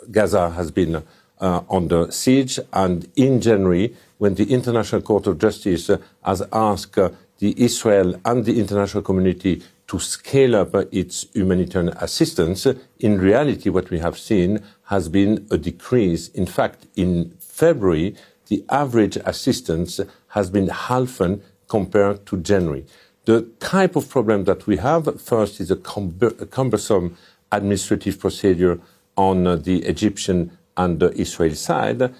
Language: English